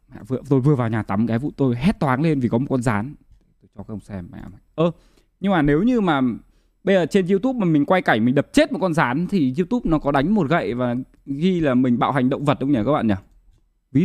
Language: Vietnamese